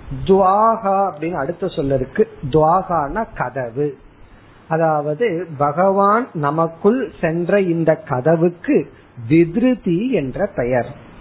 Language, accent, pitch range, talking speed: Tamil, native, 140-185 Hz, 75 wpm